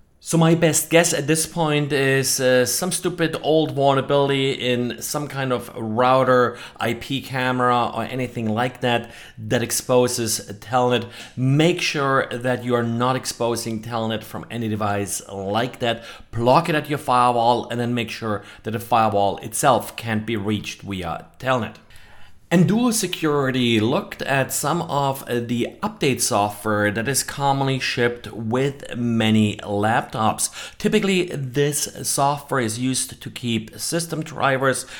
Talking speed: 145 wpm